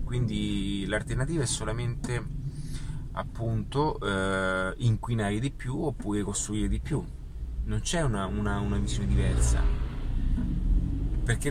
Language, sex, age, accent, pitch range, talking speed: Italian, male, 30-49, native, 100-135 Hz, 110 wpm